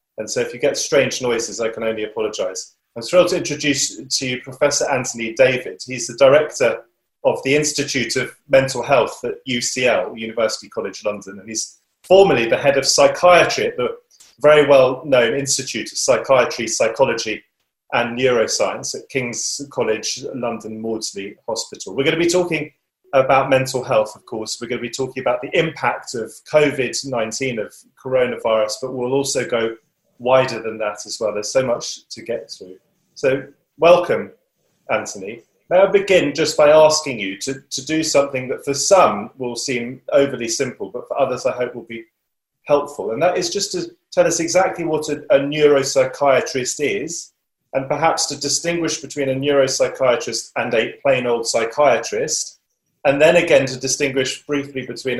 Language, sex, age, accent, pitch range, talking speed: English, male, 30-49, British, 125-170 Hz, 170 wpm